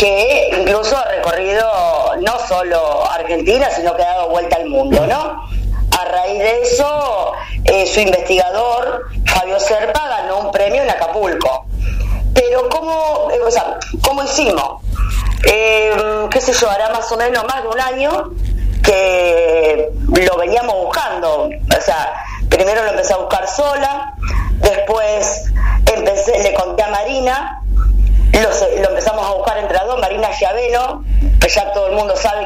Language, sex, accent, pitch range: Spanish, female, Argentinian, 195-260 Hz